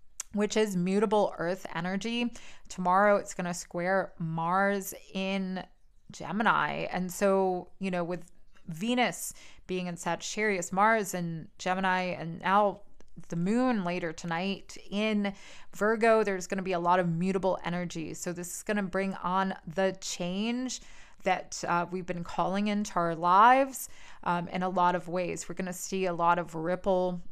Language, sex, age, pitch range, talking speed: English, female, 20-39, 175-205 Hz, 160 wpm